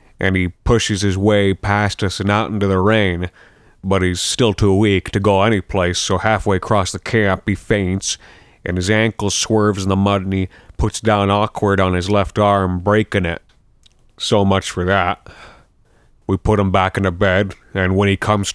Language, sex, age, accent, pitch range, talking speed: English, male, 30-49, American, 95-105 Hz, 195 wpm